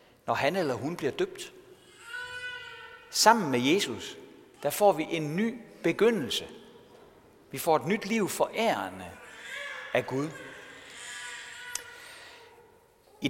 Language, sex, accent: Danish, male, native